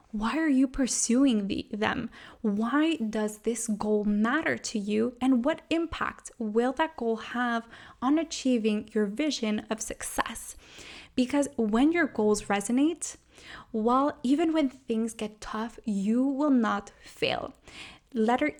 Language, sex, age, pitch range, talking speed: English, female, 20-39, 220-265 Hz, 130 wpm